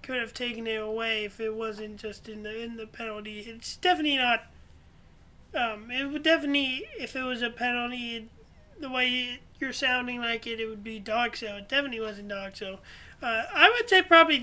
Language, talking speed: English, 195 wpm